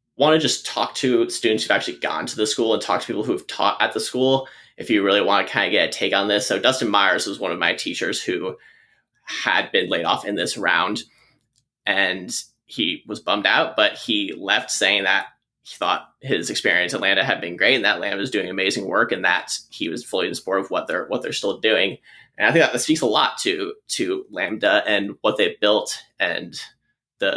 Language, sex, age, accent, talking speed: English, male, 20-39, American, 230 wpm